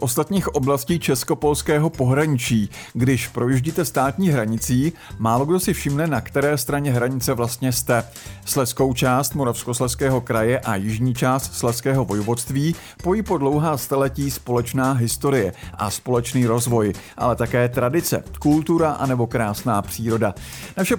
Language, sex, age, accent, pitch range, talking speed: Czech, male, 50-69, native, 120-150 Hz, 130 wpm